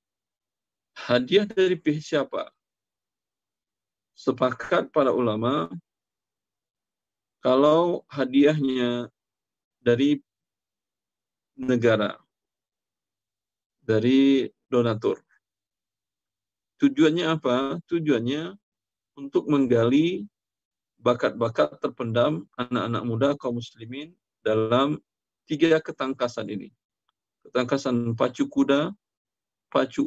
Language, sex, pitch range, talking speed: Indonesian, male, 105-145 Hz, 65 wpm